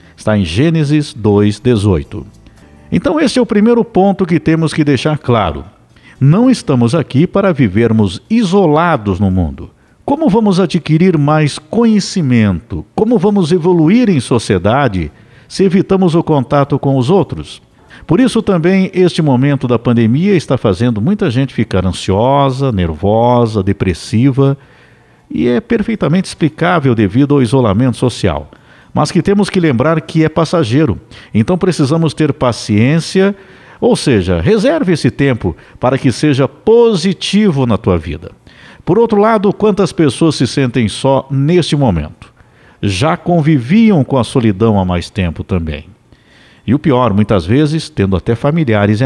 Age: 60-79